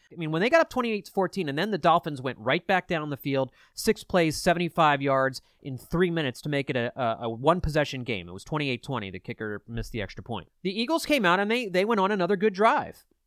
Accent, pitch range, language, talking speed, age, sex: American, 140-220 Hz, English, 235 wpm, 30-49, male